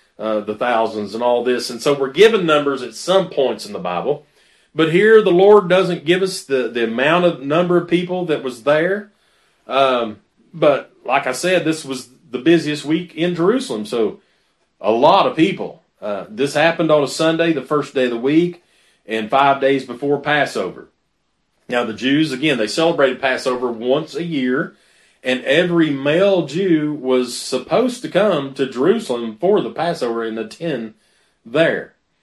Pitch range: 125-160 Hz